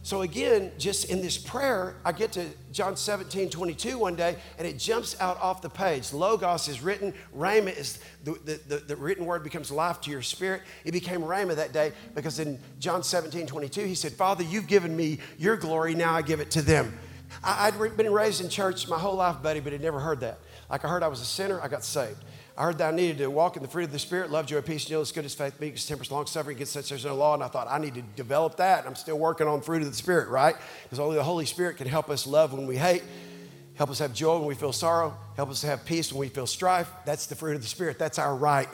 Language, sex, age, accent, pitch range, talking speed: English, male, 40-59, American, 140-180 Hz, 270 wpm